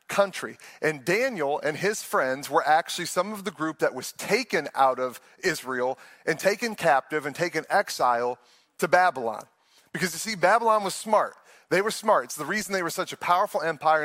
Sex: male